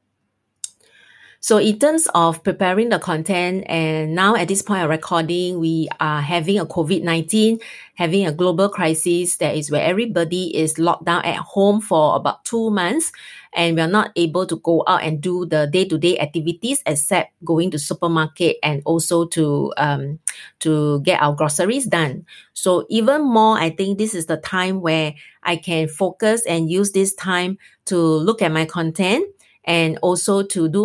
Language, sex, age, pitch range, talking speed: English, female, 30-49, 165-200 Hz, 170 wpm